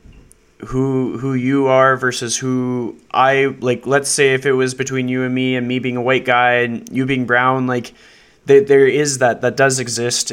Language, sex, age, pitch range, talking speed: English, male, 20-39, 115-130 Hz, 205 wpm